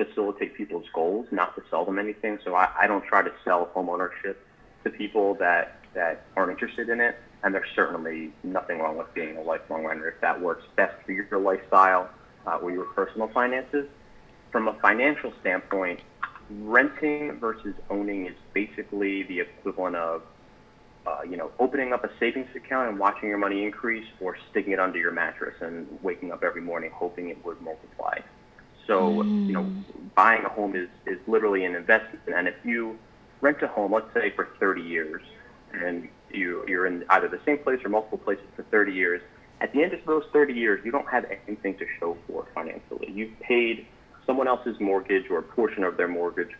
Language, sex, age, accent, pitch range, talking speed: English, male, 30-49, American, 95-115 Hz, 190 wpm